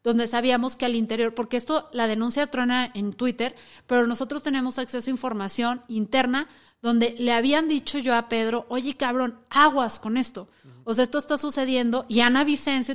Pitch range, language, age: 230-270 Hz, Spanish, 30-49